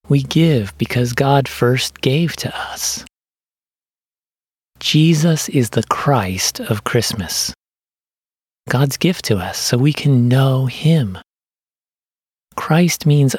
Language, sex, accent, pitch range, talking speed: English, male, American, 115-150 Hz, 110 wpm